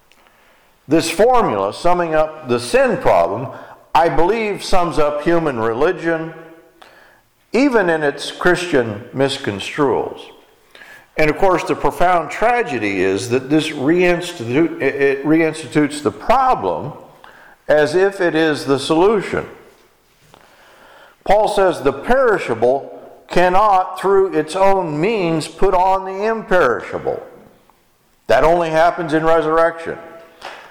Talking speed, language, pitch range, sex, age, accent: 110 wpm, English, 150-195 Hz, male, 50-69, American